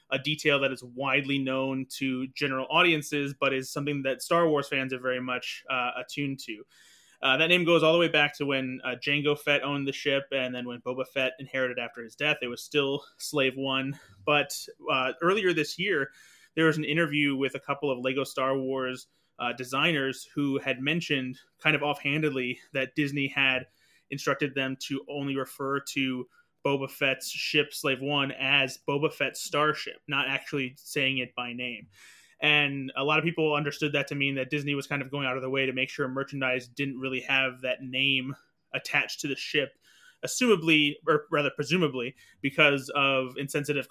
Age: 30-49